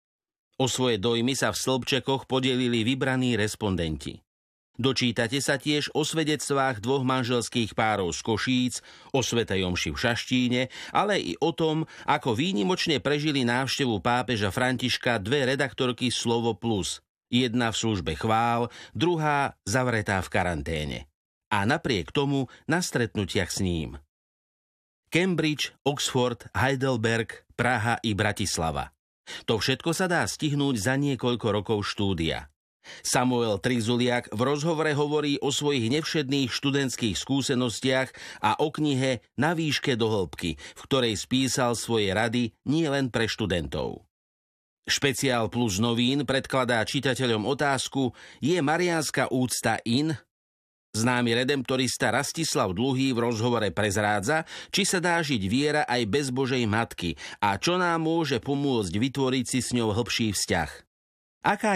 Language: Slovak